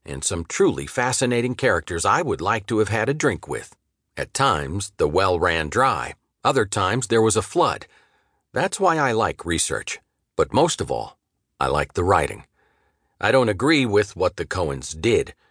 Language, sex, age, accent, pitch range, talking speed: English, male, 50-69, American, 80-125 Hz, 180 wpm